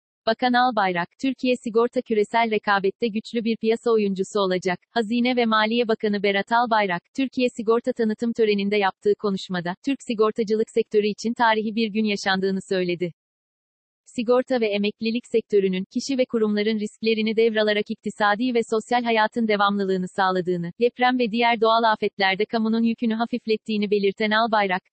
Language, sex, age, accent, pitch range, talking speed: Turkish, female, 40-59, native, 200-230 Hz, 135 wpm